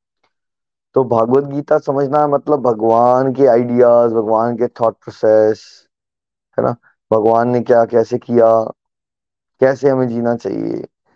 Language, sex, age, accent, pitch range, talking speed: Hindi, male, 20-39, native, 115-140 Hz, 125 wpm